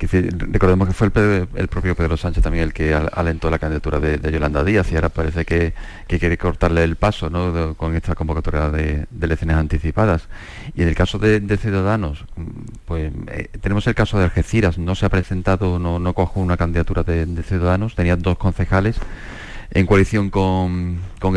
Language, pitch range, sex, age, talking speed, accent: Spanish, 80-95 Hz, male, 30-49, 190 wpm, Spanish